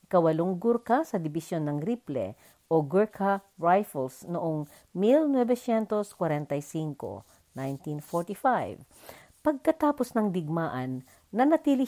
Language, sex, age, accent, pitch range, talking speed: Filipino, female, 50-69, native, 155-235 Hz, 80 wpm